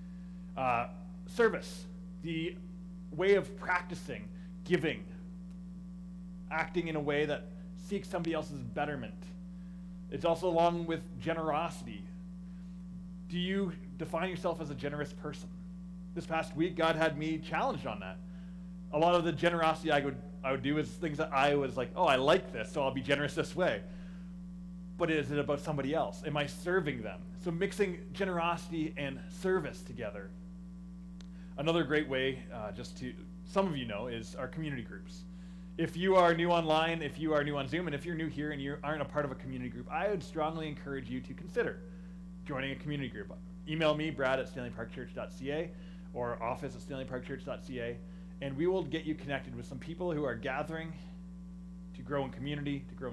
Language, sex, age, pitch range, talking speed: English, male, 20-39, 150-180 Hz, 175 wpm